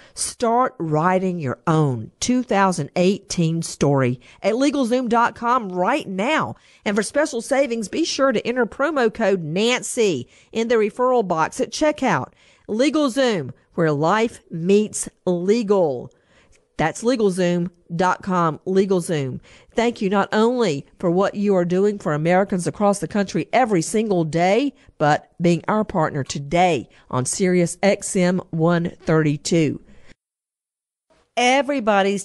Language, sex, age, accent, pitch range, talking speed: English, female, 50-69, American, 170-235 Hz, 115 wpm